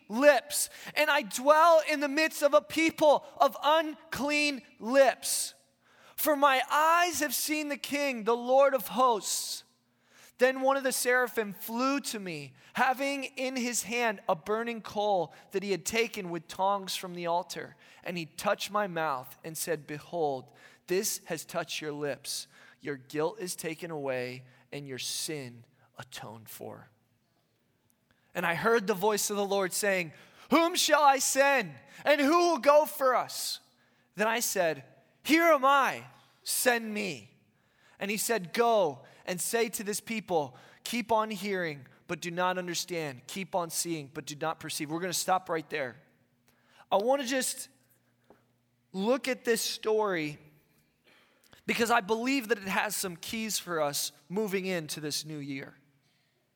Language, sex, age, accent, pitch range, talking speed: English, male, 20-39, American, 160-260 Hz, 160 wpm